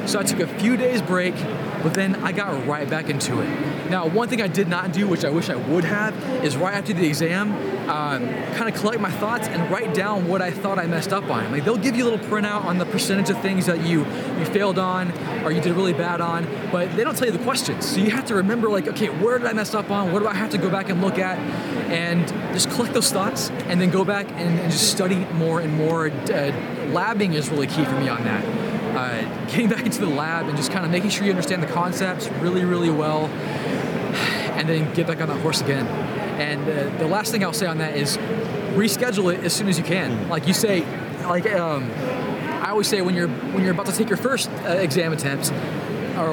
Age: 20-39